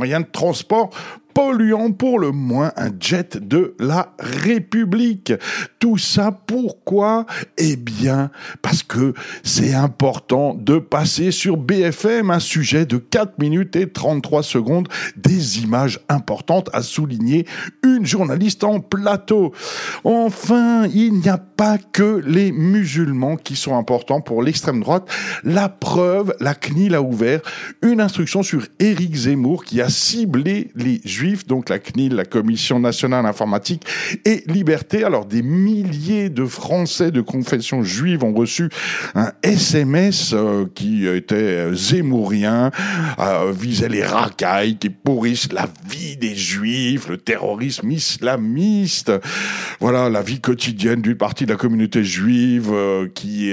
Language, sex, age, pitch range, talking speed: French, male, 60-79, 125-195 Hz, 135 wpm